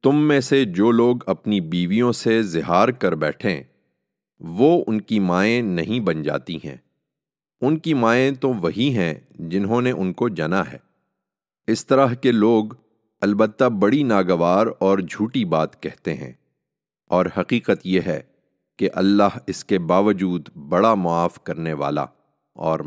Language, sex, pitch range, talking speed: English, male, 90-115 Hz, 150 wpm